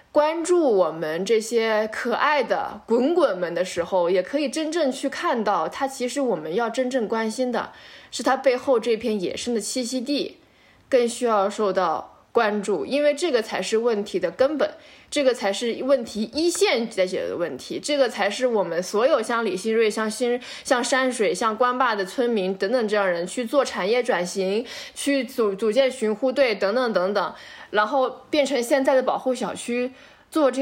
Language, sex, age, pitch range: Chinese, female, 20-39, 210-275 Hz